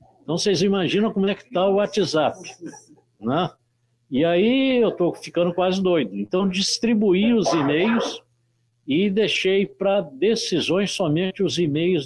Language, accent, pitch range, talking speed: Portuguese, Brazilian, 120-185 Hz, 140 wpm